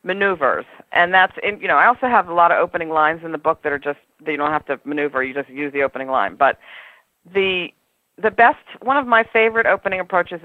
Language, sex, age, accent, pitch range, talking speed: English, female, 50-69, American, 155-220 Hz, 230 wpm